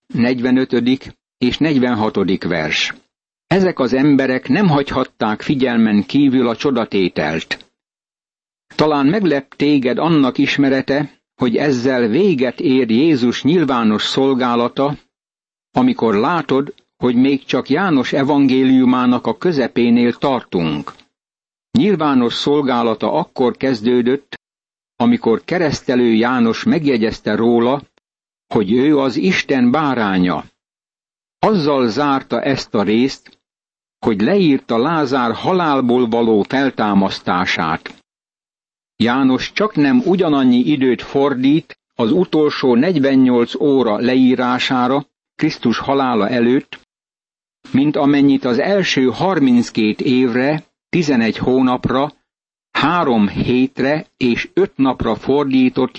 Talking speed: 95 wpm